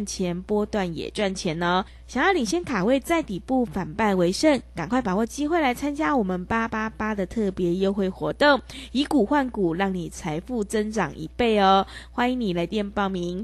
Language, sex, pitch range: Chinese, female, 185-265 Hz